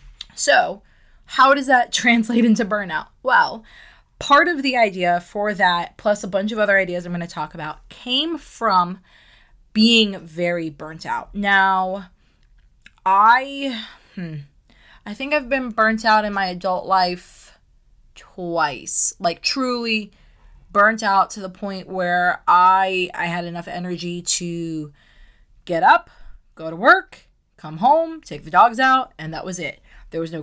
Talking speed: 150 wpm